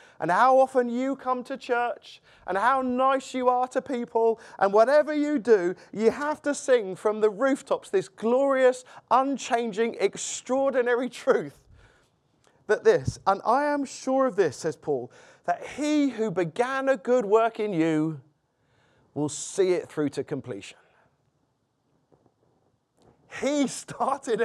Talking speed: 140 wpm